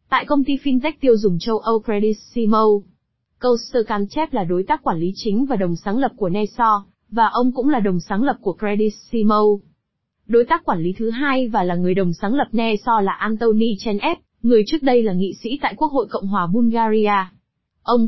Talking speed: 205 wpm